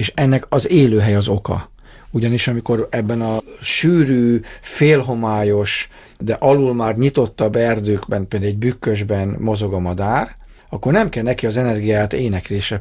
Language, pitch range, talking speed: Hungarian, 105-130 Hz, 140 wpm